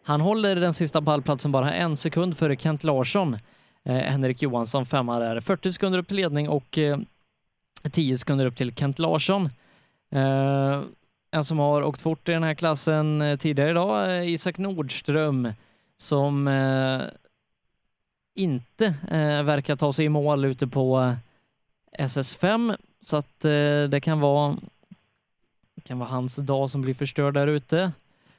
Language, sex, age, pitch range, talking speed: Swedish, male, 20-39, 135-165 Hz, 150 wpm